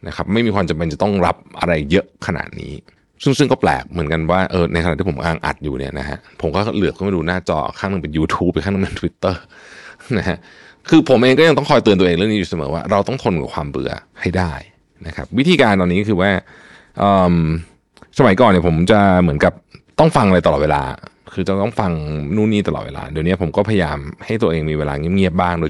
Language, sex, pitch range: Thai, male, 80-100 Hz